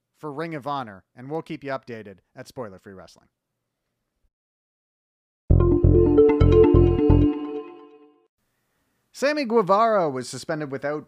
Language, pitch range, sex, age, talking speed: English, 115-170 Hz, male, 30-49, 95 wpm